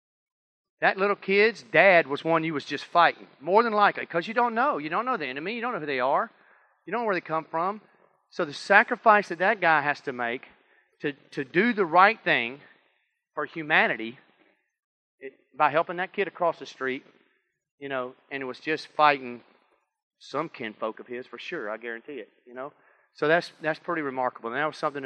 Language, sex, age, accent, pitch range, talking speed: English, male, 40-59, American, 130-180 Hz, 210 wpm